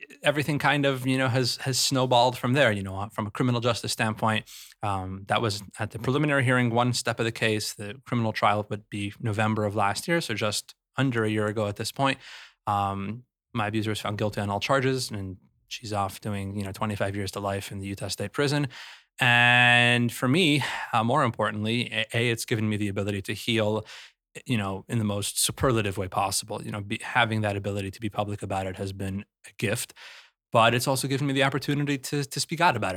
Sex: male